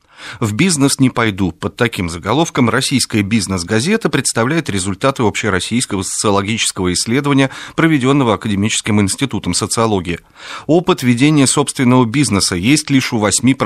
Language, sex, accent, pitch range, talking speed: Russian, male, native, 95-130 Hz, 115 wpm